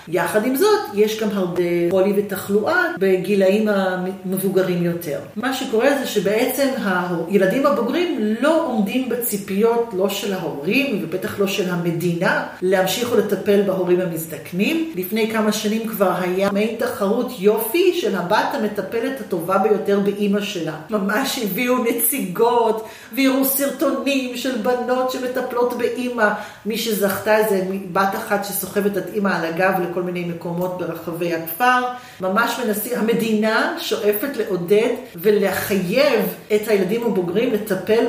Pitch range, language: 190-250 Hz, Hebrew